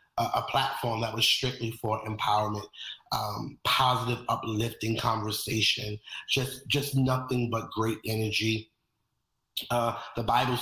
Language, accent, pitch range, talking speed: English, American, 105-120 Hz, 115 wpm